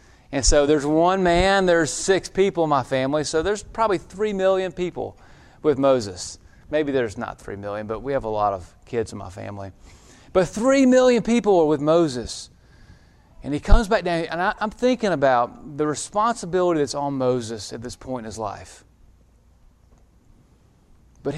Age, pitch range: 30-49, 120-185 Hz